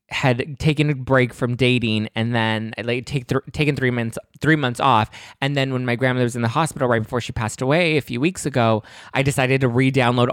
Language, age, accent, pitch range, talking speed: English, 20-39, American, 120-150 Hz, 220 wpm